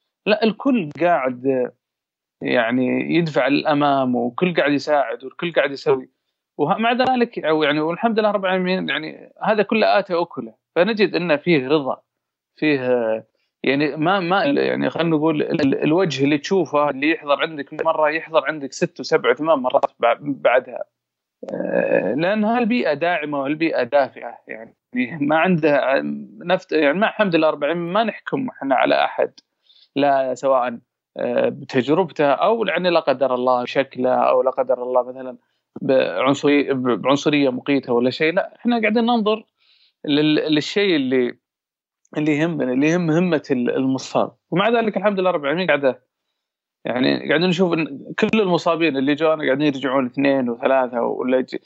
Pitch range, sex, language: 135-175 Hz, male, Arabic